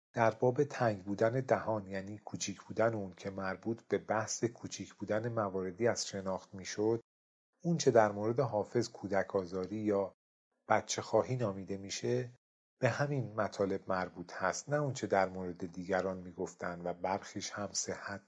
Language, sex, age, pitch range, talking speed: Persian, male, 40-59, 100-125 Hz, 150 wpm